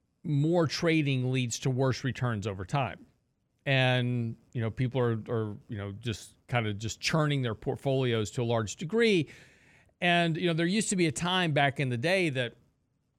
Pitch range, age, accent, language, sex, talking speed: 120-155 Hz, 50-69, American, English, male, 185 wpm